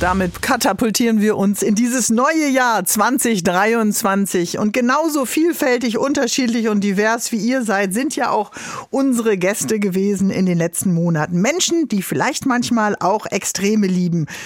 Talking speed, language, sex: 145 wpm, German, female